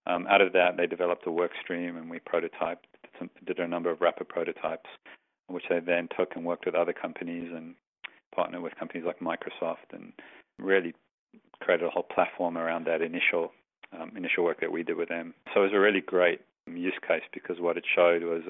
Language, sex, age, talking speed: English, male, 40-59, 205 wpm